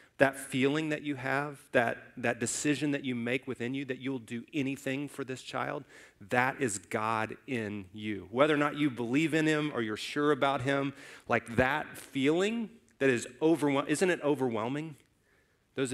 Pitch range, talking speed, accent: 115-140 Hz, 175 wpm, American